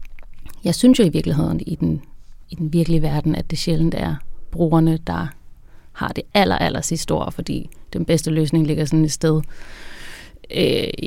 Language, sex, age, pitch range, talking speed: Danish, female, 30-49, 150-185 Hz, 170 wpm